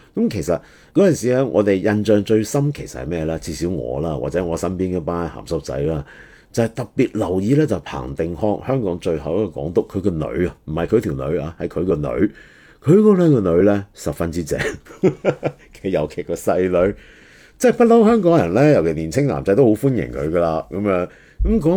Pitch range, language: 85-135 Hz, Chinese